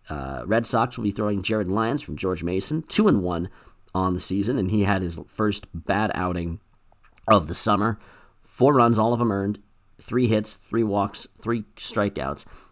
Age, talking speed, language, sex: 40-59, 185 wpm, English, male